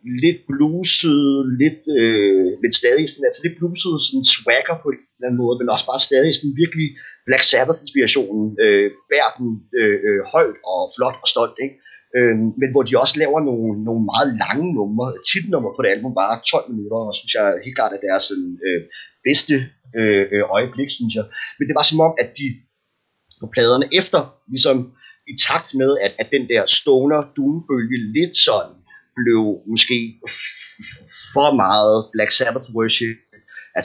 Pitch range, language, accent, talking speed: 110-150 Hz, Danish, native, 175 wpm